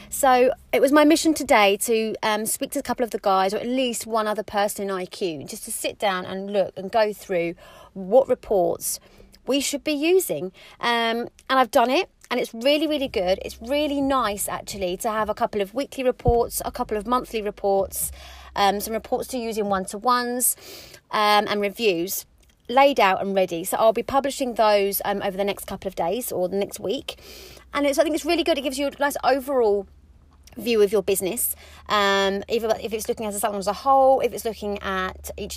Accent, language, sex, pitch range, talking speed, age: British, English, female, 195-255 Hz, 215 wpm, 30-49